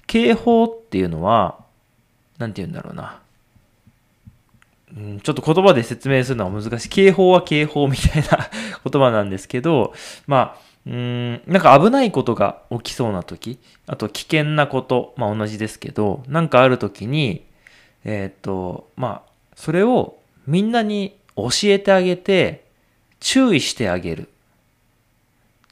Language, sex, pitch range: Japanese, male, 105-150 Hz